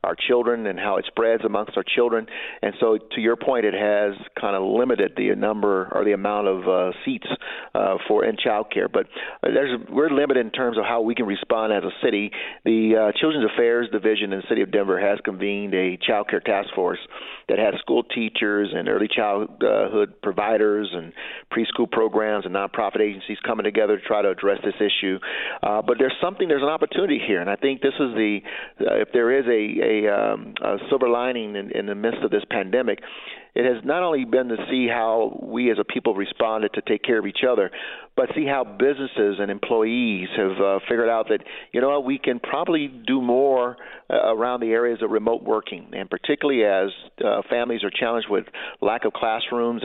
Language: English